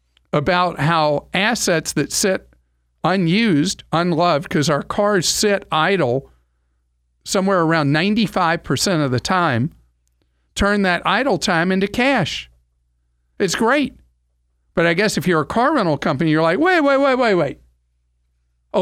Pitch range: 125-210 Hz